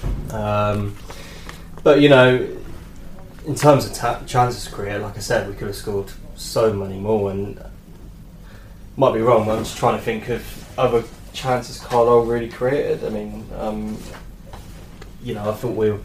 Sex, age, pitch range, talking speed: male, 20-39, 100-115 Hz, 165 wpm